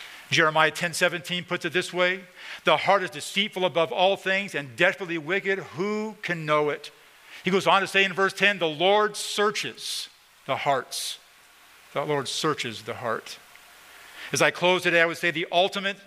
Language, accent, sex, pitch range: English, American, male, 135-175 Hz